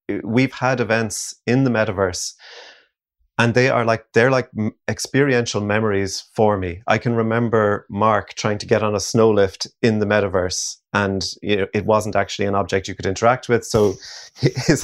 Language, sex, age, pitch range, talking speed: English, male, 30-49, 100-120 Hz, 170 wpm